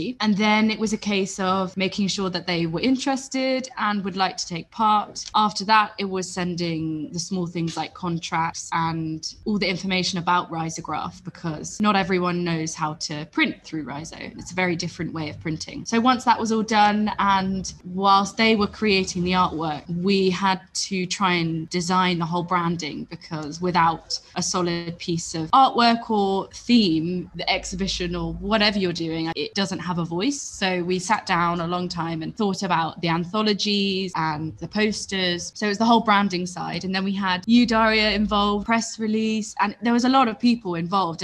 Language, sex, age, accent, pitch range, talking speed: English, female, 20-39, British, 170-205 Hz, 190 wpm